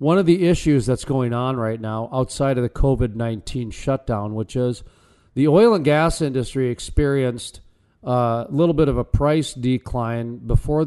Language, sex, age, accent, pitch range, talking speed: English, male, 40-59, American, 120-145 Hz, 165 wpm